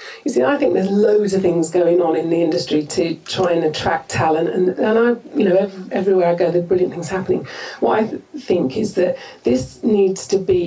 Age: 40-59